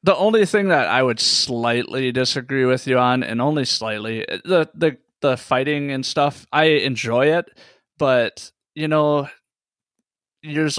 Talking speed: 150 wpm